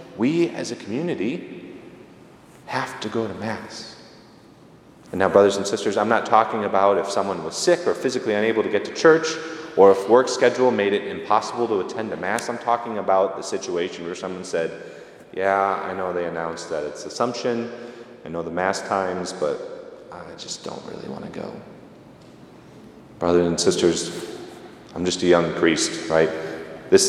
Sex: male